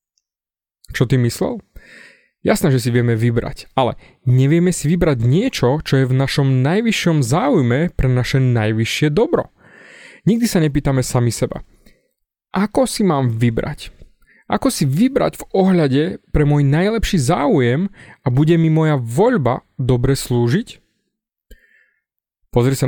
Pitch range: 125-170 Hz